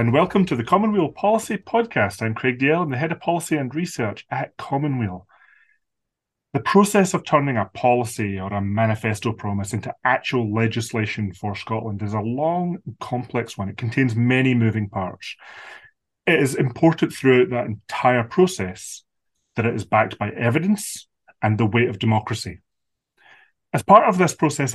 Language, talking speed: English, 160 wpm